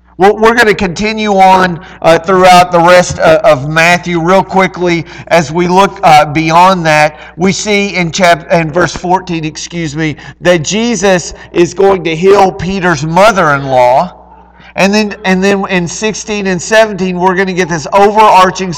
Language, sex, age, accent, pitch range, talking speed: English, male, 40-59, American, 160-200 Hz, 165 wpm